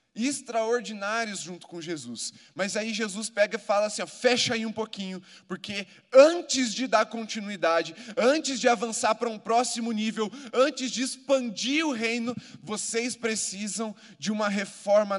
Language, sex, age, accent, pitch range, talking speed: Portuguese, male, 20-39, Brazilian, 190-230 Hz, 145 wpm